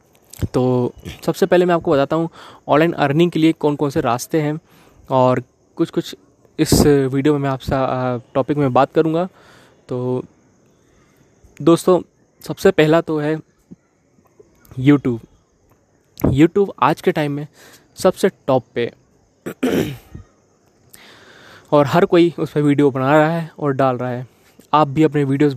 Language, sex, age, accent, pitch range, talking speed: Hindi, male, 20-39, native, 135-160 Hz, 140 wpm